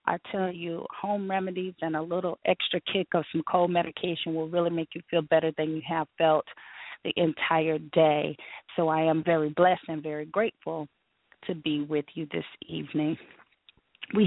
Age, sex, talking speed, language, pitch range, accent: 30-49, female, 175 wpm, English, 160-185 Hz, American